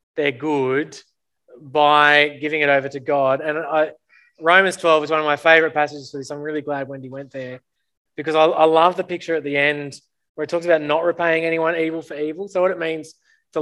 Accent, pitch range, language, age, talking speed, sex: Australian, 140-160 Hz, English, 20-39, 220 wpm, male